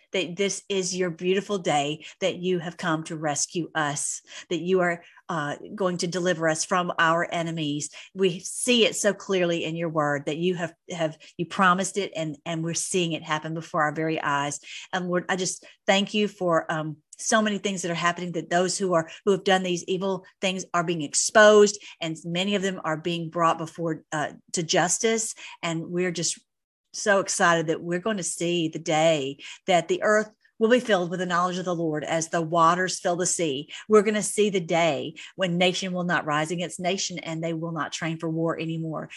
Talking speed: 210 wpm